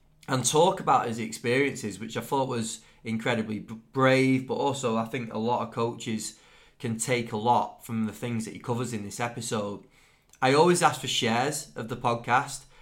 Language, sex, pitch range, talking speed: English, male, 110-125 Hz, 185 wpm